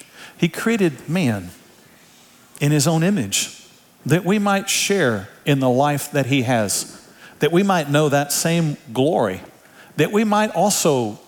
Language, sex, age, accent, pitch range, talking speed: English, male, 50-69, American, 115-160 Hz, 150 wpm